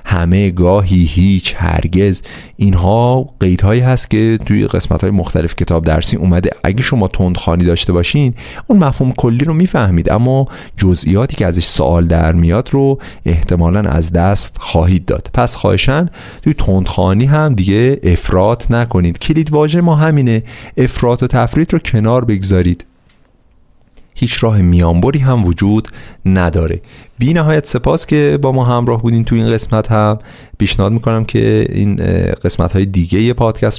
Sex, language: male, Persian